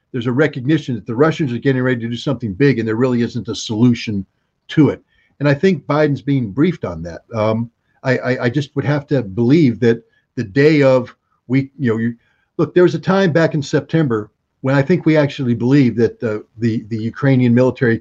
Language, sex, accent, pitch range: English, male, American, 120-155 Hz